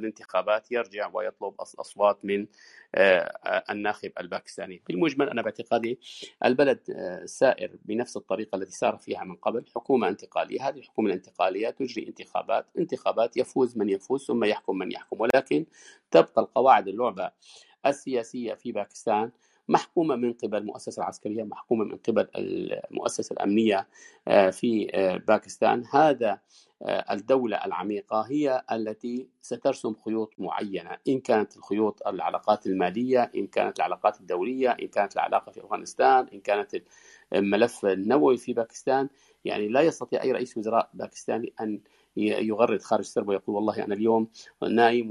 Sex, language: male, Arabic